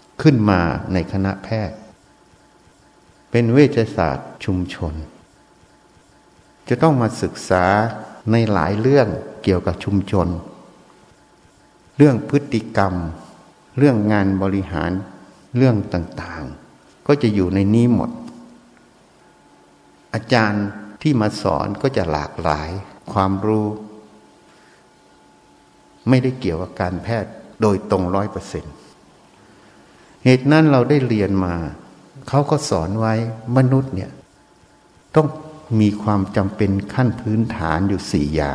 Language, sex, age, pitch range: Thai, male, 60-79, 90-120 Hz